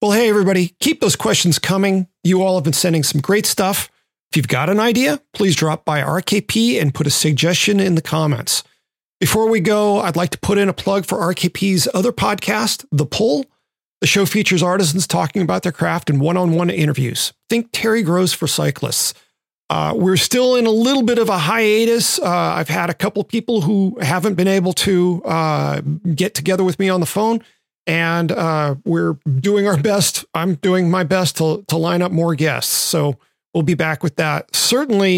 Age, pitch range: 40-59, 155-200 Hz